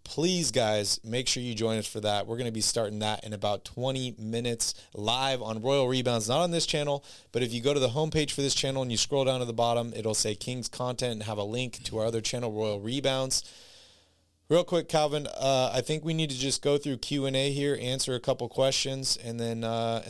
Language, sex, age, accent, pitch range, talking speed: English, male, 30-49, American, 115-140 Hz, 235 wpm